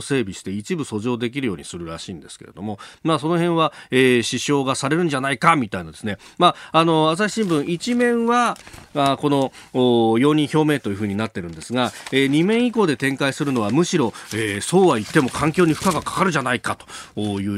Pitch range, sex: 105-155 Hz, male